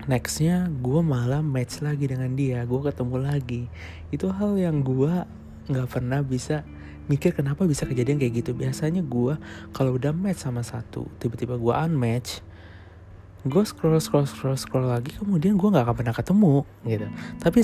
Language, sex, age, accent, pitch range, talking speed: Indonesian, male, 20-39, native, 105-145 Hz, 160 wpm